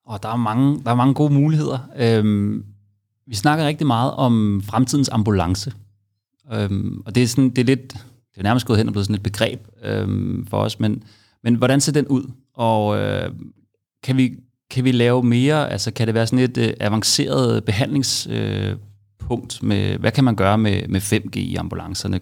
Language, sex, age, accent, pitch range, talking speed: Danish, male, 30-49, native, 105-130 Hz, 190 wpm